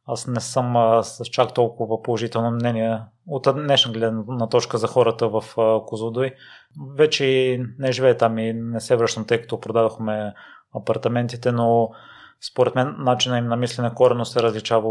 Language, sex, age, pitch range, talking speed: Bulgarian, male, 20-39, 110-125 Hz, 155 wpm